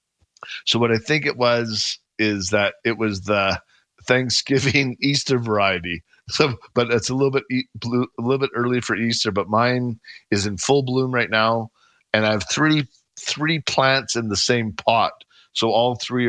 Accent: American